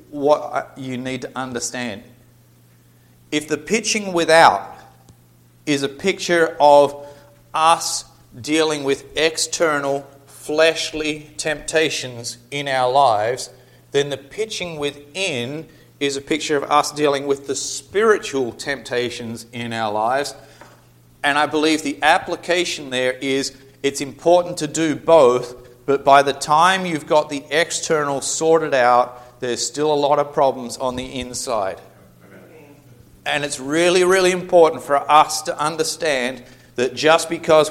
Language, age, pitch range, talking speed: English, 40-59, 130-160 Hz, 130 wpm